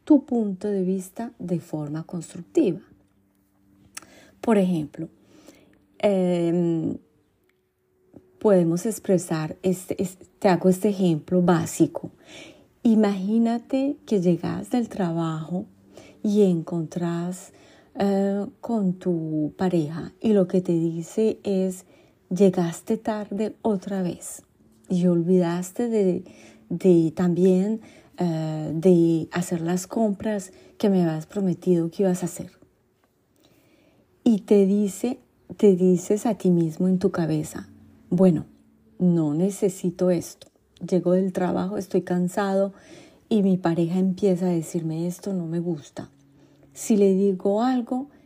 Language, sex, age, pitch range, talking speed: French, female, 30-49, 170-205 Hz, 115 wpm